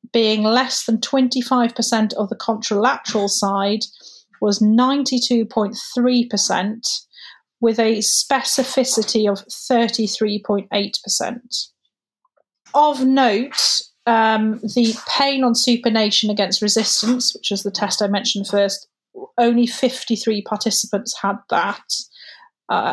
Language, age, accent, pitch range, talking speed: English, 40-59, British, 205-245 Hz, 95 wpm